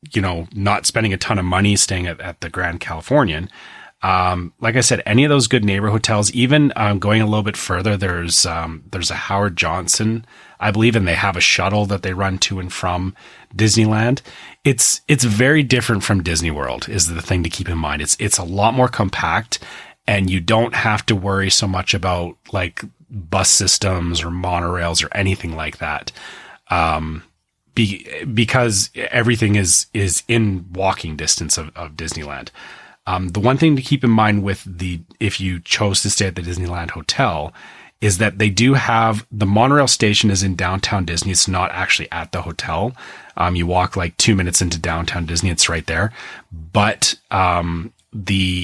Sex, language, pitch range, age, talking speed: male, English, 90-110 Hz, 30-49, 190 wpm